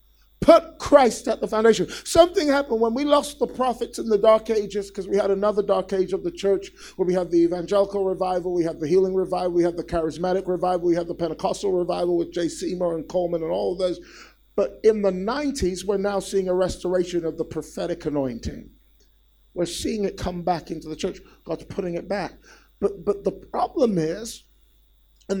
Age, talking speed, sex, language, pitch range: 50-69, 205 wpm, male, English, 165-215 Hz